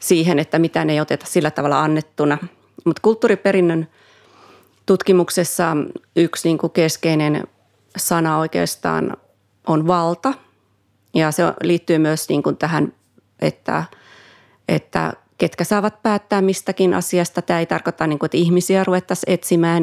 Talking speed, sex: 120 wpm, female